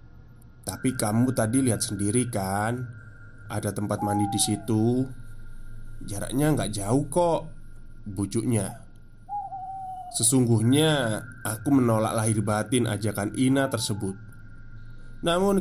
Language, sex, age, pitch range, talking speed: Indonesian, male, 20-39, 110-130 Hz, 95 wpm